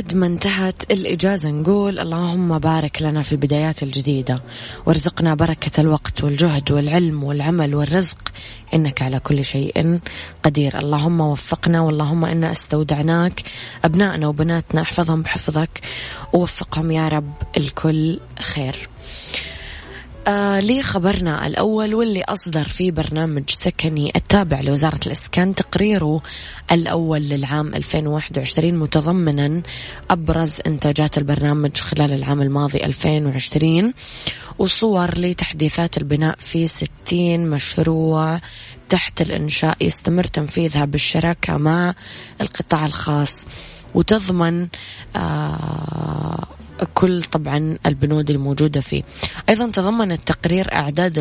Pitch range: 145-170 Hz